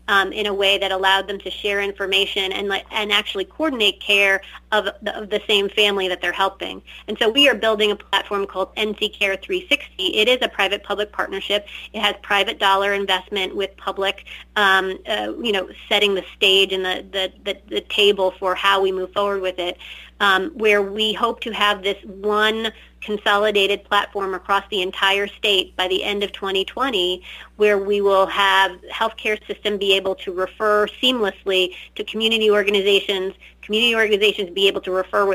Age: 30-49